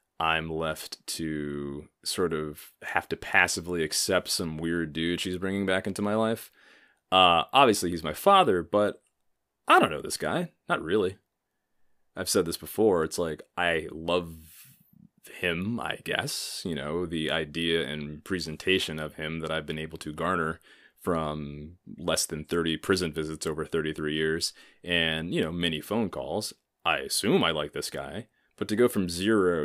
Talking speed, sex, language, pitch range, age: 165 wpm, male, English, 75-90 Hz, 30-49